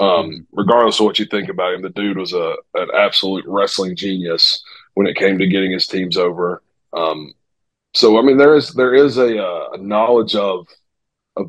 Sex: male